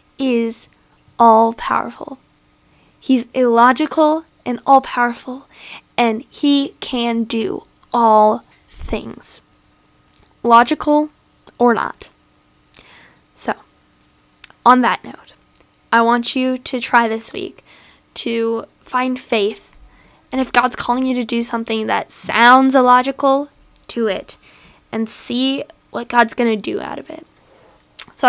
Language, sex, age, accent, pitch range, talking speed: English, female, 10-29, American, 230-260 Hz, 110 wpm